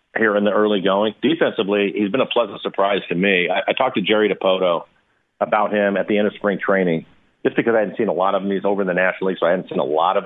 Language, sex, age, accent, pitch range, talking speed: English, male, 40-59, American, 95-110 Hz, 285 wpm